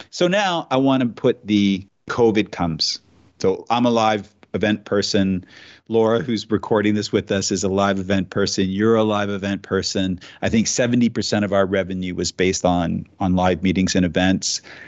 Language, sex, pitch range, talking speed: English, male, 95-115 Hz, 180 wpm